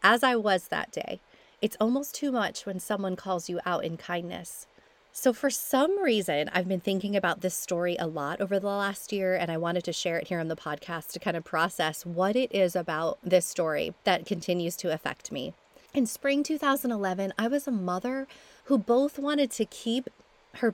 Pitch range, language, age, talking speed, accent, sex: 180-240 Hz, English, 30-49, 205 wpm, American, female